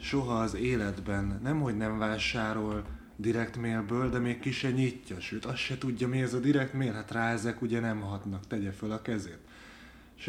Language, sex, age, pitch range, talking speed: Hungarian, male, 30-49, 105-125 Hz, 190 wpm